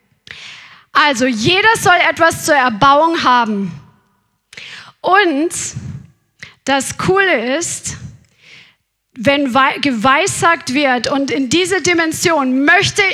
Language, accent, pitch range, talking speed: German, German, 280-345 Hz, 85 wpm